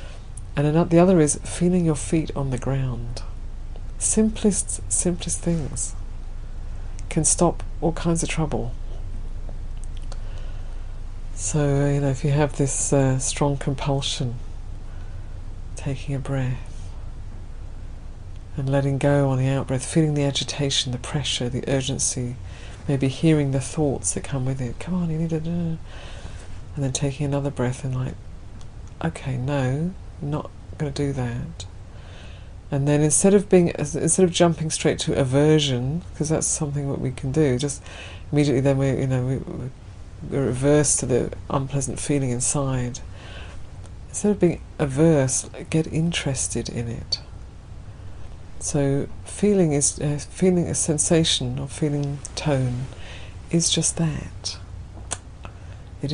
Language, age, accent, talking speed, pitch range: English, 50-69, British, 135 wpm, 95-145 Hz